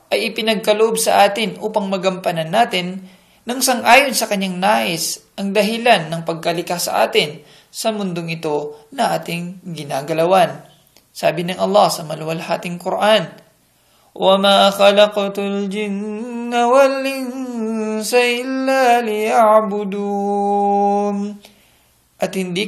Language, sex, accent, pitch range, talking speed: Filipino, male, native, 165-220 Hz, 100 wpm